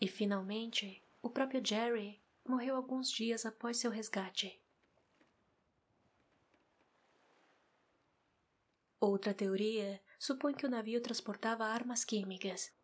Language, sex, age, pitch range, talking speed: Portuguese, female, 20-39, 205-240 Hz, 95 wpm